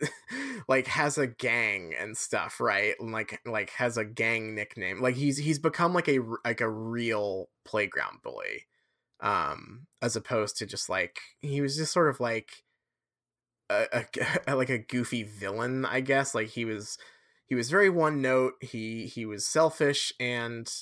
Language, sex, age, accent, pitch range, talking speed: English, male, 20-39, American, 115-140 Hz, 165 wpm